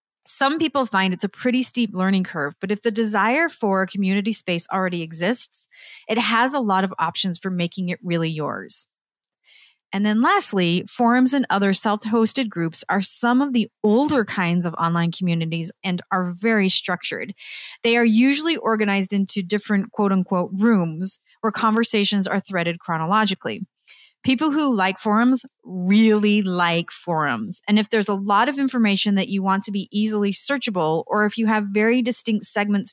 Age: 30-49